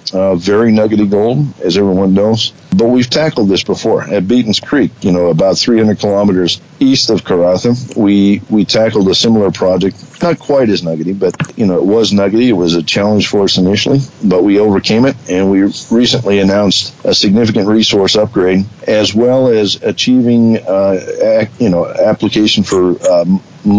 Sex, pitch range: male, 95-115 Hz